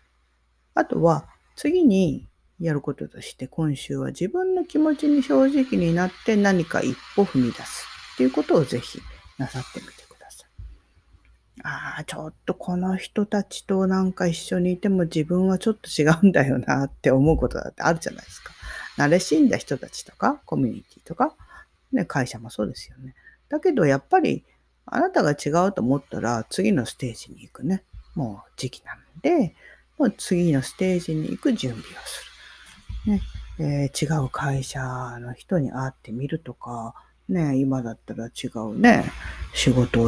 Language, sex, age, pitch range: Japanese, female, 40-59, 120-185 Hz